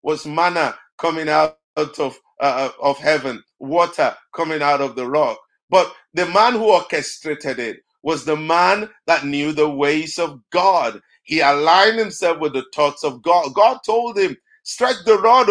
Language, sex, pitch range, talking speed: English, male, 145-205 Hz, 165 wpm